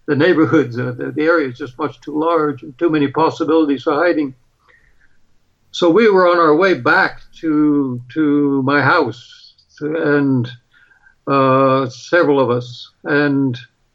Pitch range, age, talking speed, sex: 145-175 Hz, 60-79, 140 wpm, male